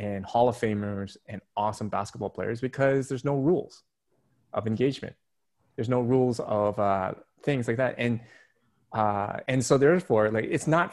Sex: male